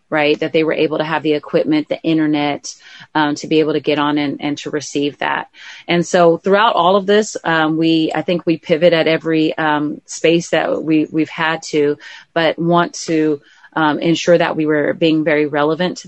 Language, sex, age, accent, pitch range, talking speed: English, female, 30-49, American, 150-165 Hz, 210 wpm